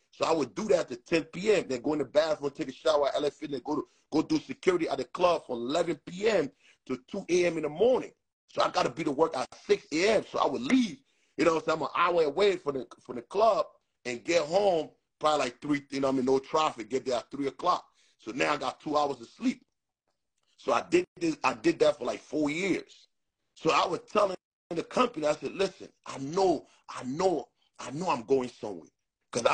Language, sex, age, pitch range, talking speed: English, male, 30-49, 130-180 Hz, 235 wpm